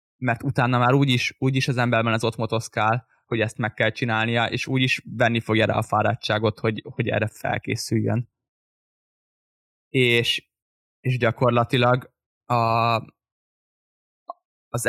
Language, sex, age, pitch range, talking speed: Hungarian, male, 10-29, 110-125 Hz, 130 wpm